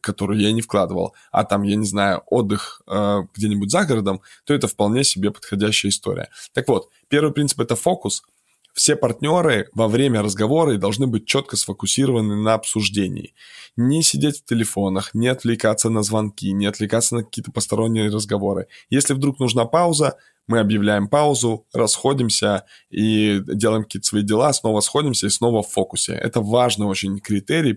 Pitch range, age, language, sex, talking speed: 105-125 Hz, 20-39, Russian, male, 160 wpm